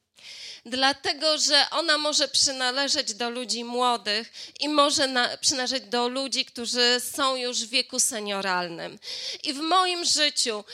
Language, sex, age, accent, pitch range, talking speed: Polish, female, 20-39, native, 235-290 Hz, 130 wpm